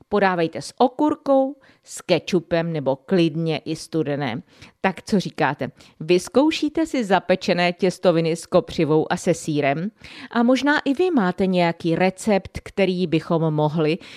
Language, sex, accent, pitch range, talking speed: Czech, female, native, 160-235 Hz, 130 wpm